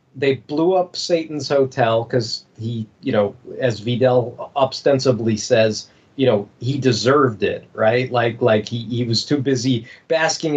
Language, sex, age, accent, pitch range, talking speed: English, male, 40-59, American, 115-145 Hz, 155 wpm